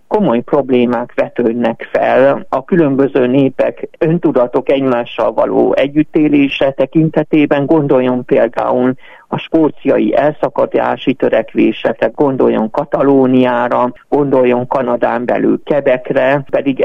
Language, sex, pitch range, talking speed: Hungarian, male, 130-170 Hz, 90 wpm